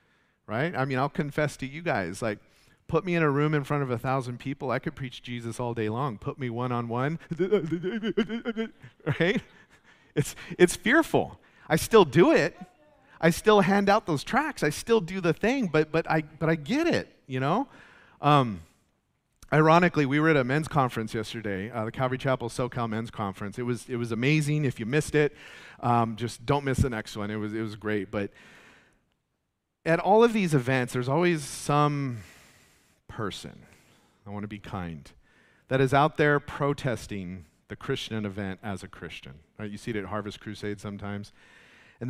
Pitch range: 105-150 Hz